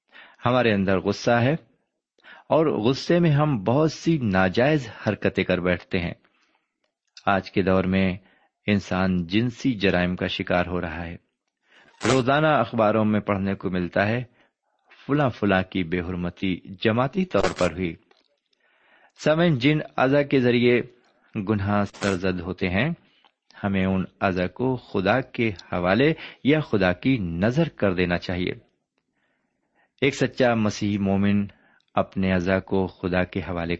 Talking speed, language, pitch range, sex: 135 wpm, Urdu, 95-130 Hz, male